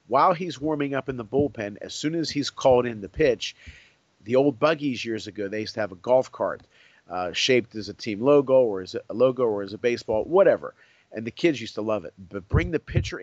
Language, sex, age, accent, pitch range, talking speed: English, male, 40-59, American, 105-135 Hz, 240 wpm